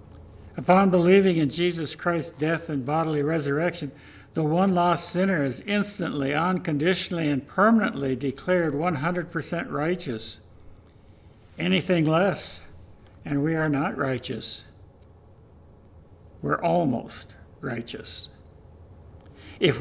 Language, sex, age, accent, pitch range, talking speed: English, male, 60-79, American, 105-170 Hz, 95 wpm